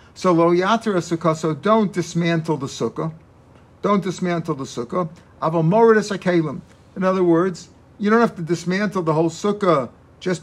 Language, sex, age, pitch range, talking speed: English, male, 50-69, 155-190 Hz, 120 wpm